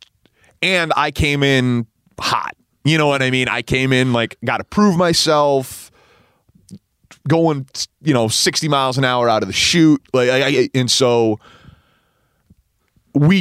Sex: male